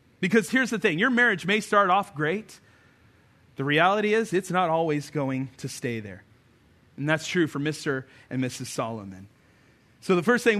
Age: 30-49